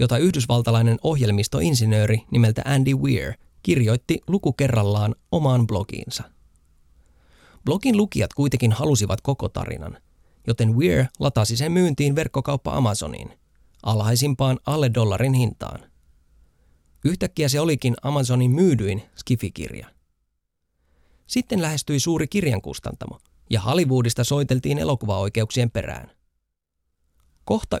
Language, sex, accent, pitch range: Finnish, male, native, 95-140 Hz